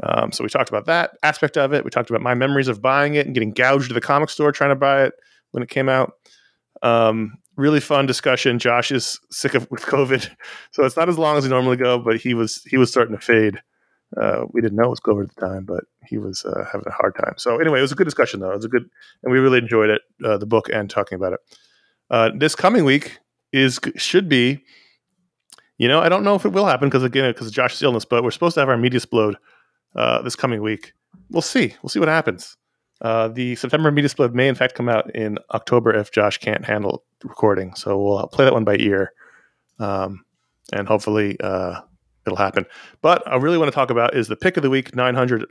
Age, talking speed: 30-49, 245 wpm